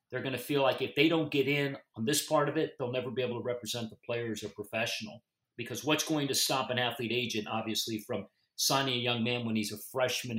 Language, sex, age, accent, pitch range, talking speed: English, male, 50-69, American, 110-135 Hz, 255 wpm